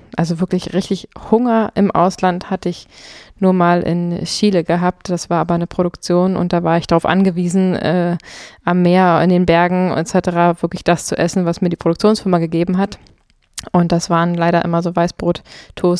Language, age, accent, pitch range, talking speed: German, 20-39, German, 170-190 Hz, 180 wpm